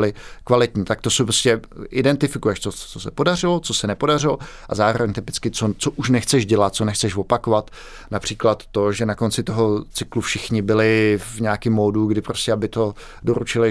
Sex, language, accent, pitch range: male, Czech, native, 105-125 Hz